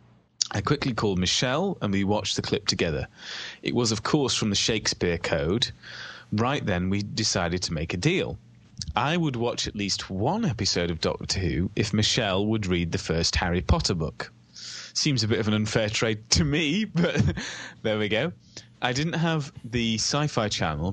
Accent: British